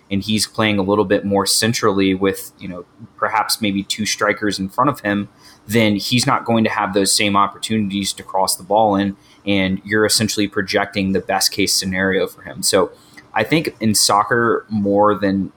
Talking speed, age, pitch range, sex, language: 195 wpm, 20-39, 95-110 Hz, male, English